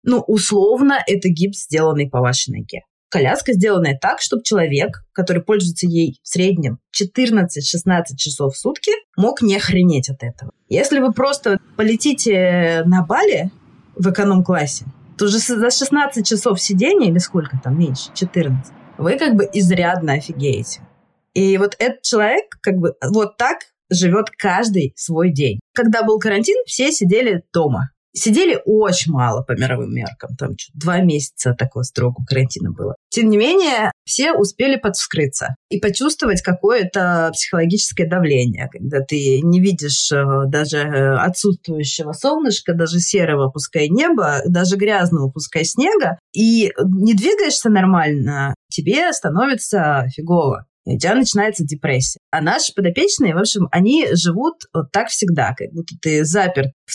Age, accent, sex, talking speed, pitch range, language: 20-39, native, female, 140 wpm, 150-215 Hz, Russian